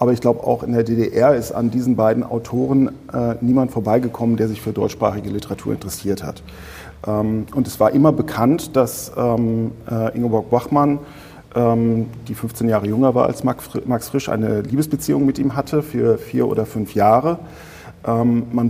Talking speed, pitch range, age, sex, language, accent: 175 wpm, 110-130 Hz, 40-59, male, German, German